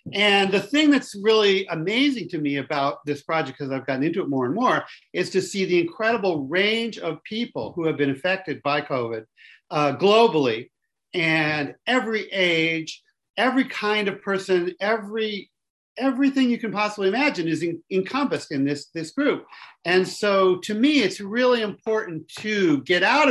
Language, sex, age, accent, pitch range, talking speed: English, male, 50-69, American, 145-205 Hz, 165 wpm